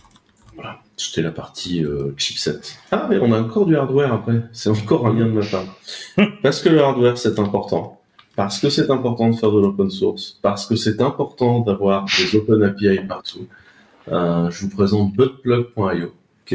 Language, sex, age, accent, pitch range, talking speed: French, male, 30-49, French, 90-115 Hz, 185 wpm